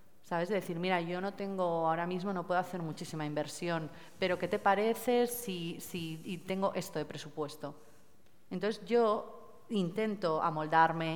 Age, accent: 30-49, Spanish